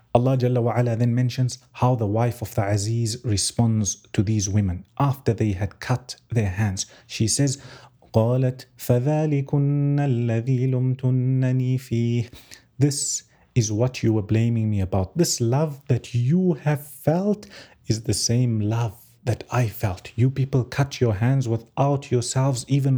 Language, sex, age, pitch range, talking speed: English, male, 30-49, 115-130 Hz, 135 wpm